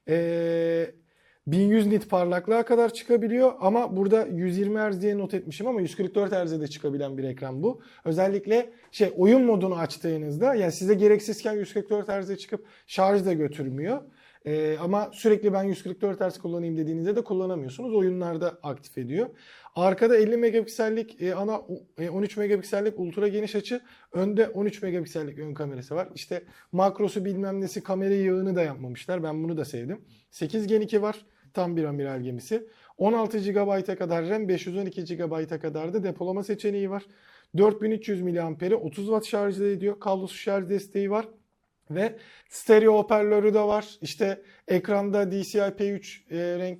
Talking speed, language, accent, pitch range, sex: 145 wpm, Turkish, native, 170-210 Hz, male